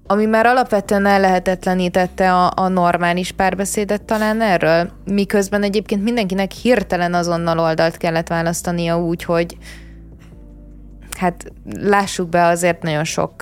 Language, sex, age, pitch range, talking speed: Hungarian, female, 20-39, 170-195 Hz, 120 wpm